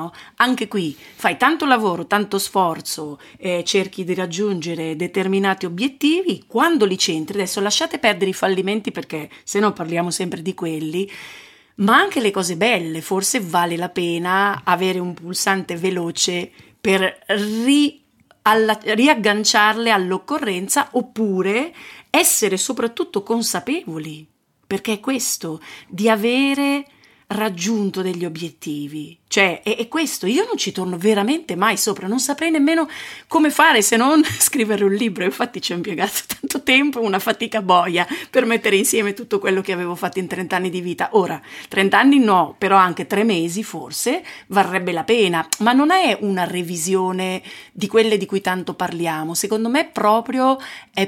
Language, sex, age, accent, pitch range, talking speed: Italian, female, 40-59, native, 185-230 Hz, 145 wpm